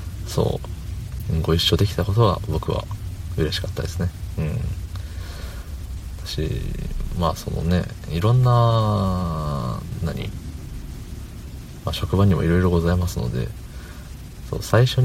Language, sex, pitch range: Japanese, male, 80-100 Hz